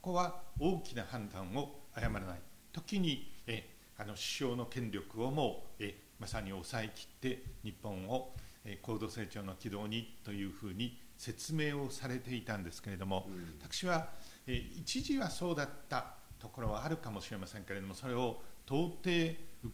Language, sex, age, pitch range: Japanese, male, 50-69, 105-135 Hz